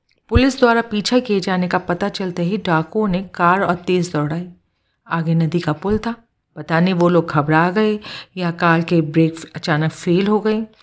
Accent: native